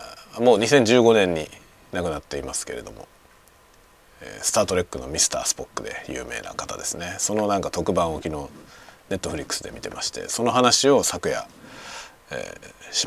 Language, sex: Japanese, male